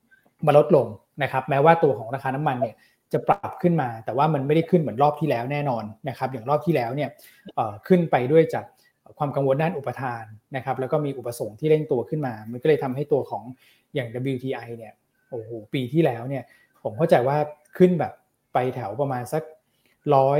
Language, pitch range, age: Thai, 125-155 Hz, 20-39